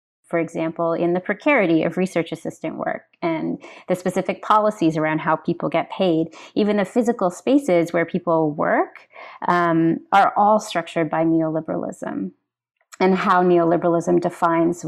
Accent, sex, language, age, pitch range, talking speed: American, female, English, 30-49, 165-210 Hz, 140 wpm